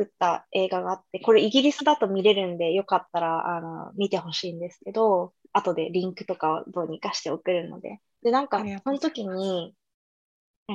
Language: Japanese